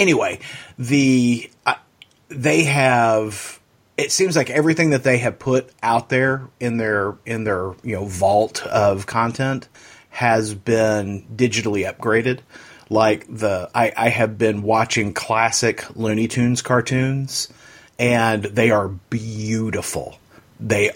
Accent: American